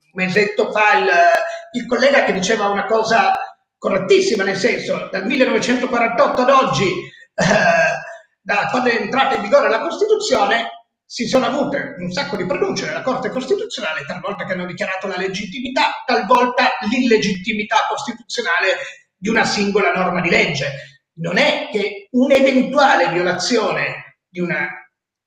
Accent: native